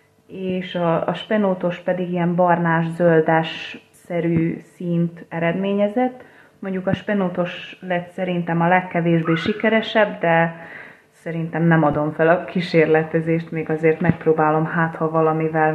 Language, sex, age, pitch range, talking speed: Hungarian, female, 30-49, 160-195 Hz, 115 wpm